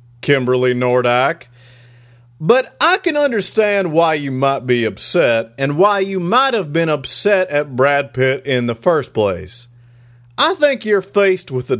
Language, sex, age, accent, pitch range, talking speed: English, male, 40-59, American, 125-200 Hz, 160 wpm